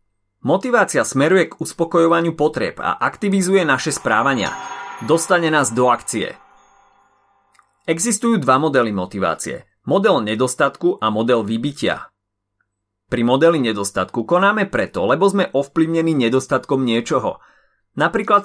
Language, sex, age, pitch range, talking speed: Slovak, male, 30-49, 115-170 Hz, 105 wpm